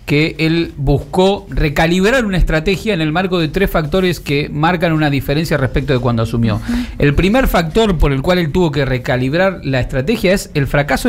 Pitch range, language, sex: 135-180 Hz, Spanish, male